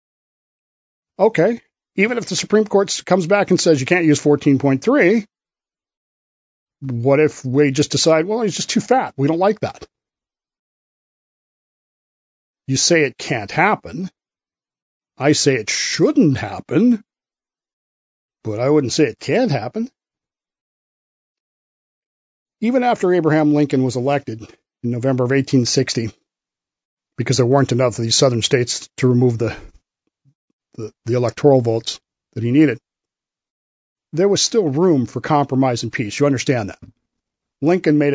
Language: English